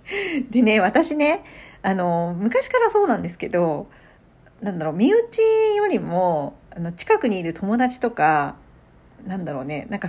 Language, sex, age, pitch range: Japanese, female, 40-59, 190-300 Hz